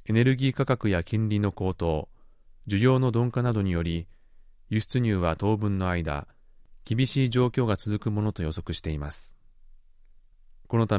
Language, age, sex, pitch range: Japanese, 30-49, male, 90-120 Hz